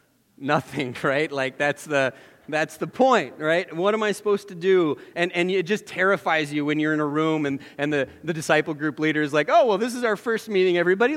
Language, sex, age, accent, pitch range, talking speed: English, male, 30-49, American, 150-215 Hz, 230 wpm